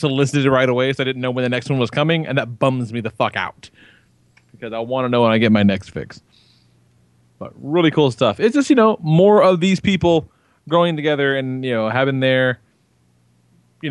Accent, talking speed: American, 230 wpm